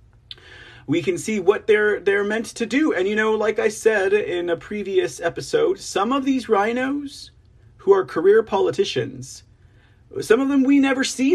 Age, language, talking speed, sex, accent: 40-59, English, 175 wpm, male, American